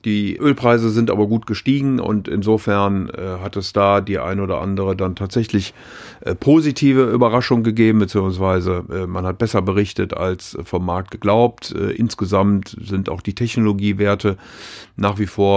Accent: German